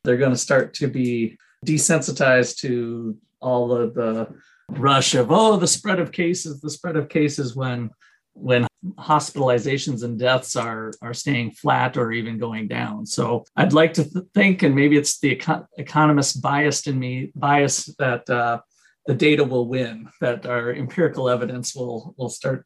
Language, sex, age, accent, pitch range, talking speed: English, male, 50-69, American, 125-160 Hz, 170 wpm